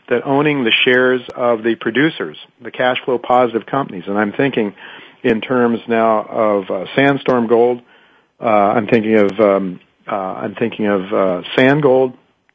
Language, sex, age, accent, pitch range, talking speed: English, male, 50-69, American, 105-125 Hz, 165 wpm